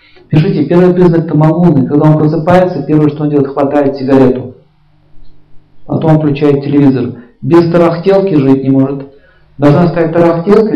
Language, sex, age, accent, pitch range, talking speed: Russian, male, 50-69, native, 140-170 Hz, 145 wpm